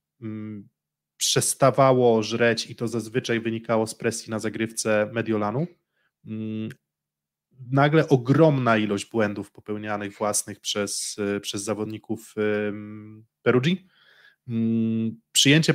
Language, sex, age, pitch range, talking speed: Polish, male, 20-39, 110-135 Hz, 85 wpm